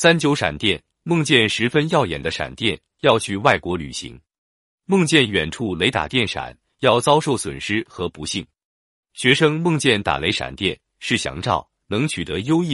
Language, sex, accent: Chinese, male, native